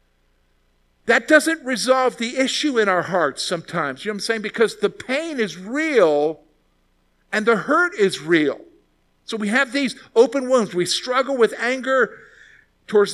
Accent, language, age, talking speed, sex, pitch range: American, English, 50-69, 160 wpm, male, 130-215 Hz